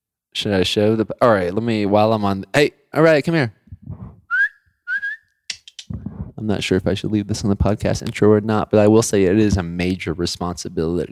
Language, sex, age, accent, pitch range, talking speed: English, male, 20-39, American, 95-110 Hz, 210 wpm